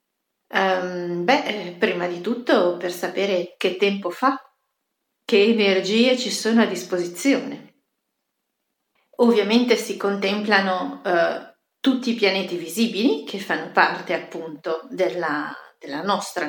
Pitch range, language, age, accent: 175-235 Hz, Italian, 40-59, native